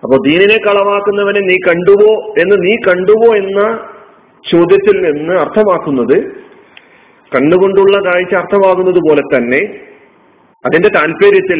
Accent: native